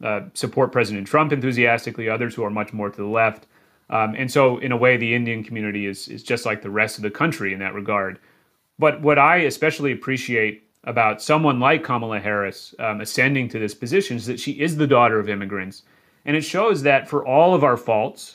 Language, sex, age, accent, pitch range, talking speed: English, male, 30-49, American, 105-135 Hz, 215 wpm